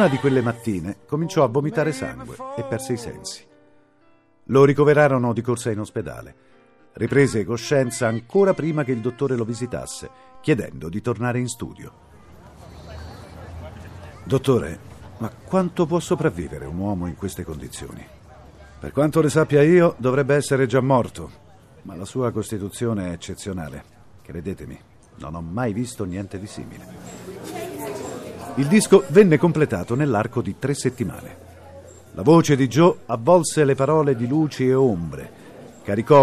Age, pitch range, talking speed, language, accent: 50-69, 100-145 Hz, 140 wpm, Italian, native